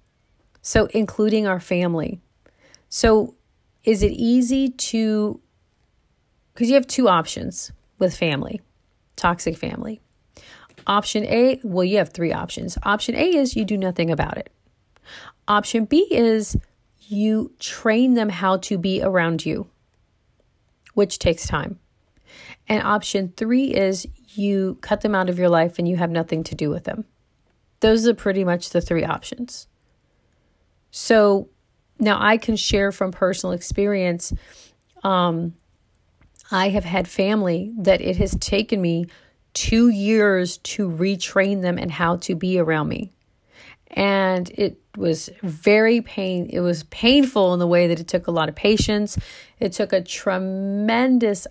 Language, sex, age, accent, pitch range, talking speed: English, female, 40-59, American, 175-215 Hz, 145 wpm